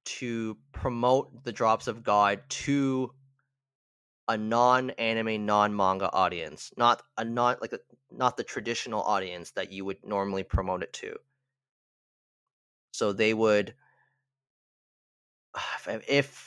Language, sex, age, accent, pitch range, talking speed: English, male, 20-39, American, 100-135 Hz, 100 wpm